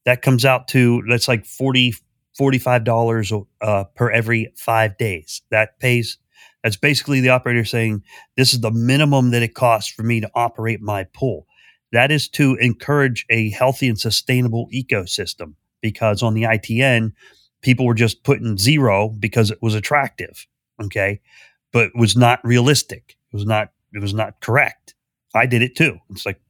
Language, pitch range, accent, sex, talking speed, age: English, 110-130 Hz, American, male, 170 wpm, 30-49